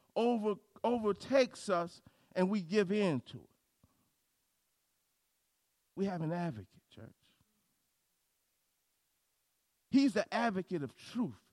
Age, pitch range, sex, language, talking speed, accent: 50-69, 200-280 Hz, male, English, 100 wpm, American